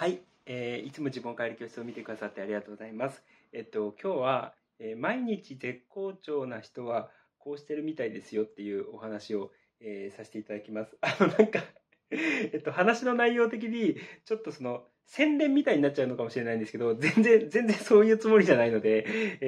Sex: male